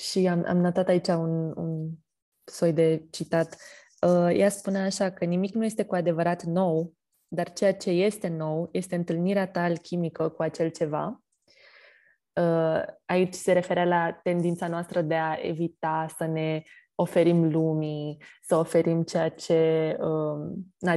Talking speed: 145 wpm